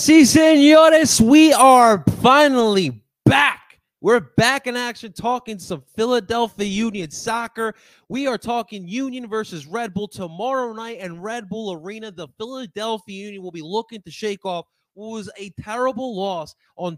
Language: English